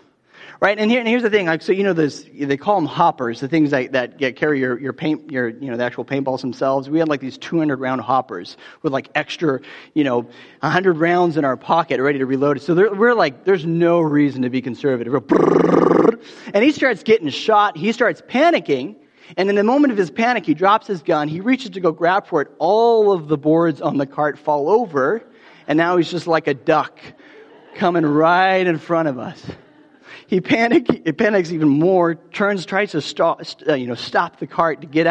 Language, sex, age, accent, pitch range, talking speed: English, male, 30-49, American, 150-220 Hz, 220 wpm